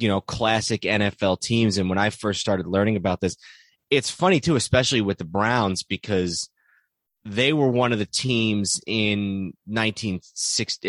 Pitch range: 95-110 Hz